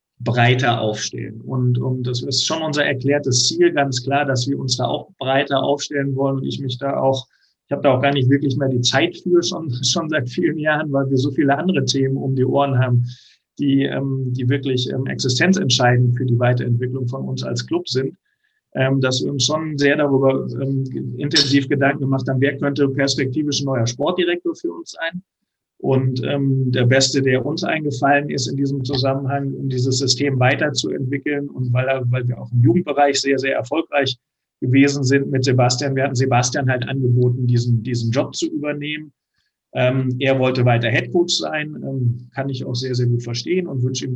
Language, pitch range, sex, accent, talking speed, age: German, 125-140 Hz, male, German, 190 wpm, 50-69